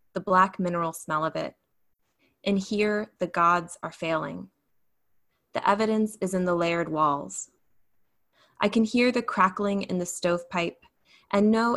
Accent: American